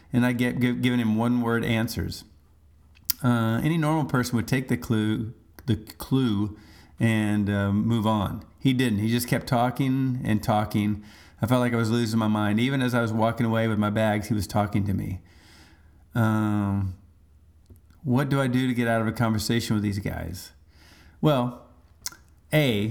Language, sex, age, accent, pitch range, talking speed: English, male, 40-59, American, 90-125 Hz, 180 wpm